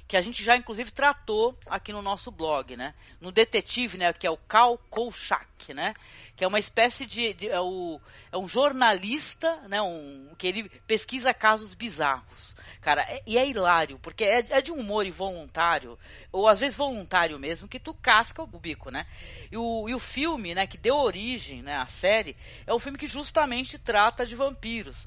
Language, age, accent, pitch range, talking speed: Portuguese, 40-59, Brazilian, 175-250 Hz, 190 wpm